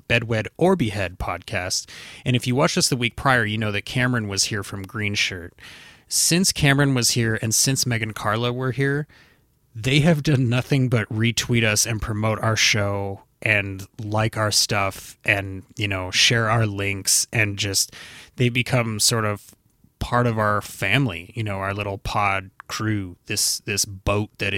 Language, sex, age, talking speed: English, male, 30-49, 175 wpm